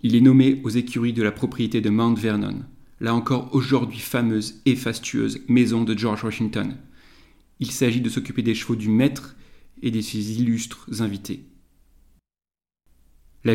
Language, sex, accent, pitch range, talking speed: French, male, French, 110-130 Hz, 155 wpm